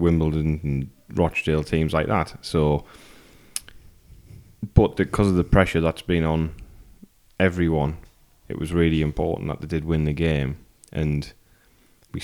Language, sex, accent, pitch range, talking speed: English, male, British, 75-85 Hz, 135 wpm